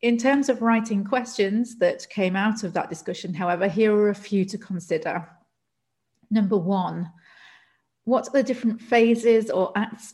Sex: female